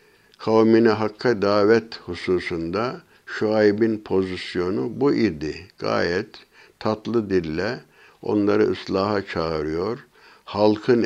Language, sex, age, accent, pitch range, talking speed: Turkish, male, 60-79, native, 90-110 Hz, 80 wpm